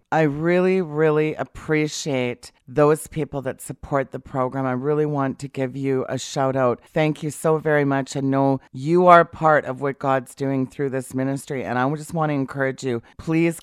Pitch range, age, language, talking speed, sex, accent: 130-155 Hz, 40-59, English, 195 wpm, female, American